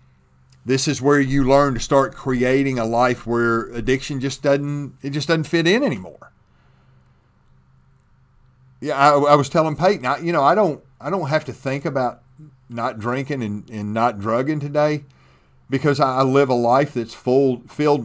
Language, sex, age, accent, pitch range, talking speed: English, male, 40-59, American, 120-145 Hz, 170 wpm